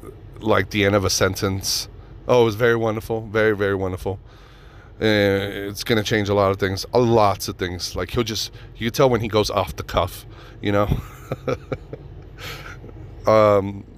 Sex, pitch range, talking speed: male, 95-115 Hz, 185 wpm